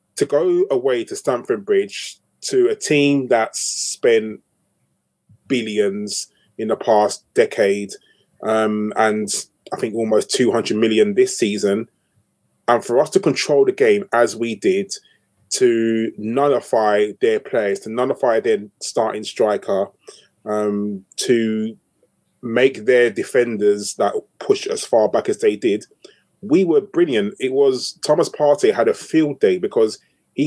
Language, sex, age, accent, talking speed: English, male, 20-39, British, 140 wpm